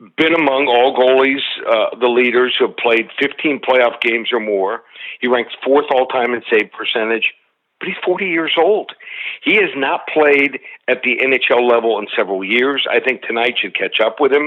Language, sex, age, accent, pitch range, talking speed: English, male, 60-79, American, 120-140 Hz, 190 wpm